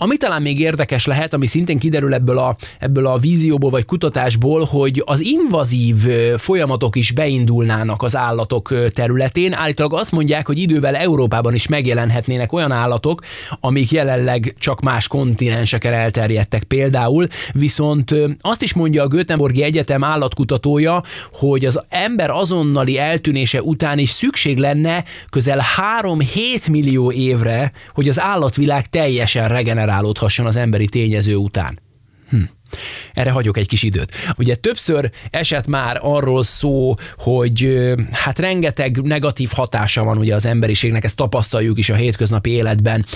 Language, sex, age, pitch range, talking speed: Hungarian, male, 20-39, 115-150 Hz, 135 wpm